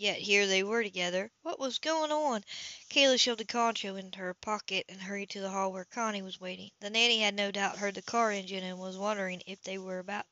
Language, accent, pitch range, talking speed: English, American, 190-220 Hz, 240 wpm